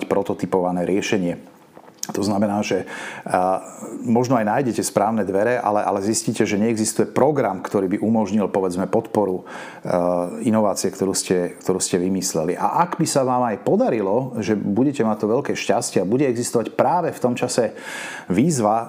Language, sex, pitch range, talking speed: Slovak, male, 95-110 Hz, 160 wpm